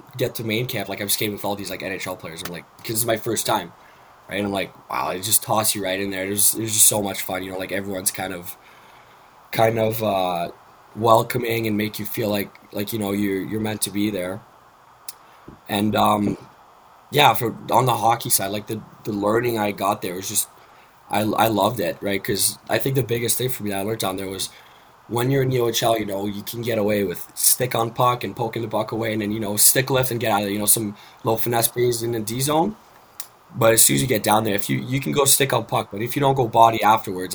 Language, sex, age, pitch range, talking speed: English, male, 20-39, 100-115 Hz, 265 wpm